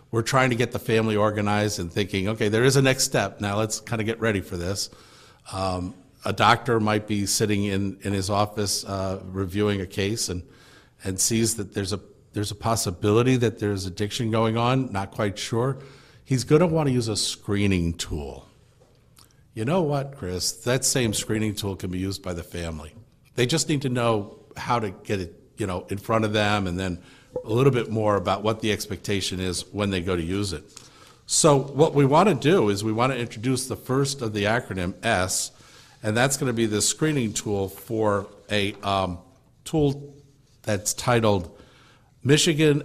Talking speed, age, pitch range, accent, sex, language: 200 wpm, 50-69, 100-125 Hz, American, male, English